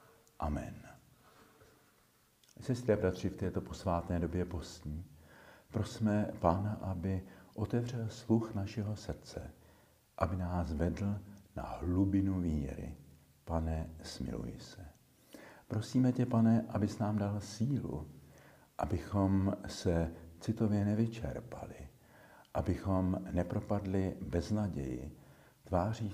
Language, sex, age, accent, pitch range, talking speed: Czech, male, 50-69, native, 80-105 Hz, 90 wpm